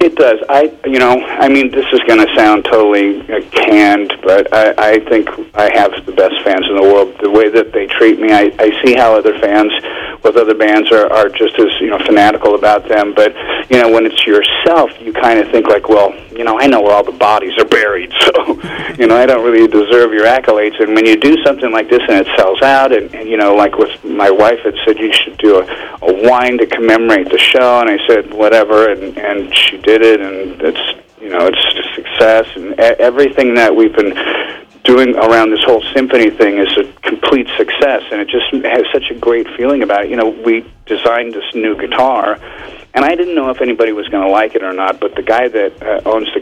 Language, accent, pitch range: English, American, 105-145 Hz